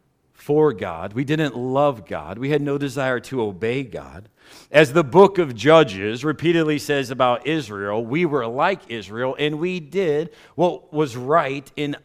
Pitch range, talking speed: 105-145 Hz, 165 wpm